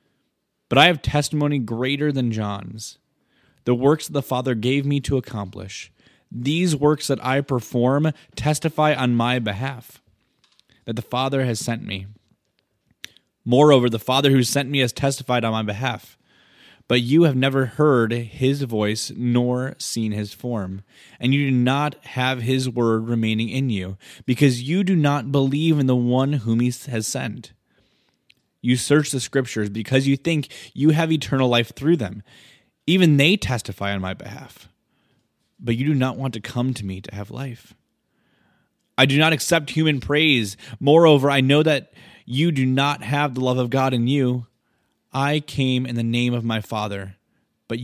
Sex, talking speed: male, 170 wpm